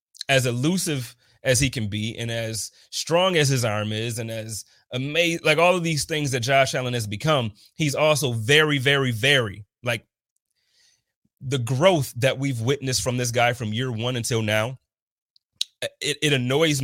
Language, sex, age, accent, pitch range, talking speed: English, male, 30-49, American, 120-155 Hz, 170 wpm